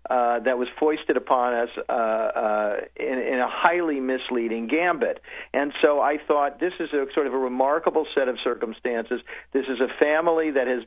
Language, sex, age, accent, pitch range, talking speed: English, male, 50-69, American, 125-160 Hz, 190 wpm